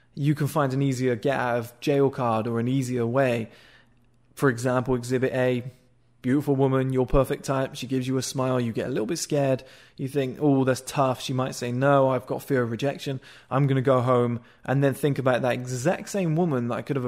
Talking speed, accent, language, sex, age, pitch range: 230 wpm, British, English, male, 20-39, 120-140 Hz